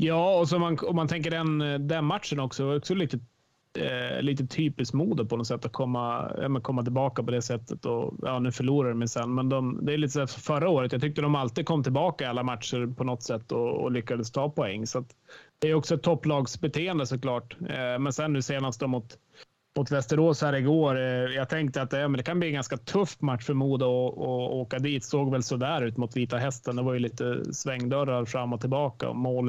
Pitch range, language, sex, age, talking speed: 125-145 Hz, Swedish, male, 30-49, 235 wpm